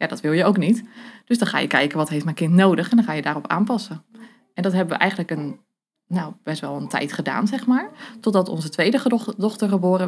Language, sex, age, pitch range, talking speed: Dutch, female, 20-39, 175-230 Hz, 245 wpm